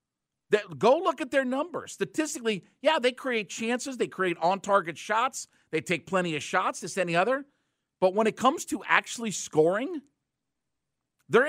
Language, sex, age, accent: English, male, 50-69, American